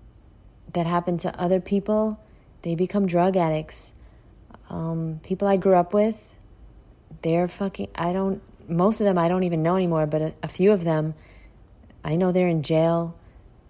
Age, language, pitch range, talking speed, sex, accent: 30-49, English, 155-185 Hz, 165 wpm, female, American